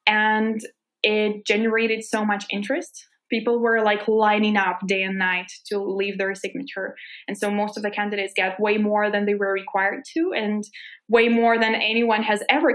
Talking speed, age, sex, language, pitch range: 185 wpm, 20-39, female, English, 195-230 Hz